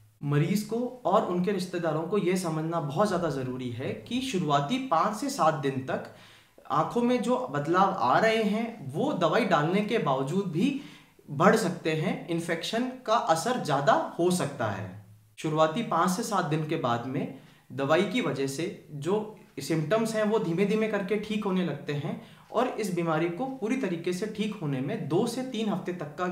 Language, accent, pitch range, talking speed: Hindi, native, 150-210 Hz, 185 wpm